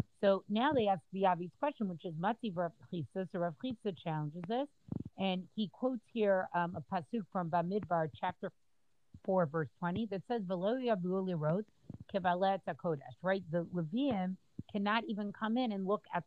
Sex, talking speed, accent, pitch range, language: female, 150 wpm, American, 170-215 Hz, English